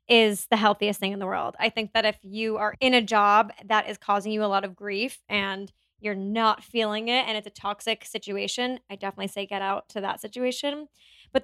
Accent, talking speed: American, 225 wpm